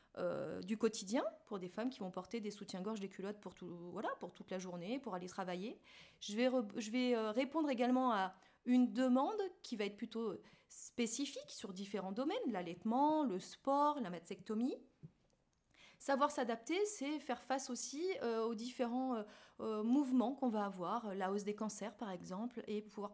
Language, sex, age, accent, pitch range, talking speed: French, female, 30-49, French, 205-260 Hz, 180 wpm